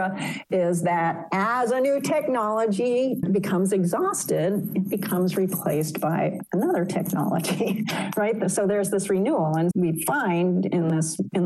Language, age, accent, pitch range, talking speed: English, 50-69, American, 170-195 Hz, 130 wpm